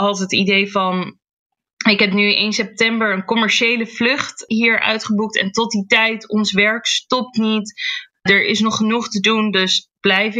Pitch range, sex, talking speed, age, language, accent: 200-230 Hz, female, 175 wpm, 20-39, Dutch, Dutch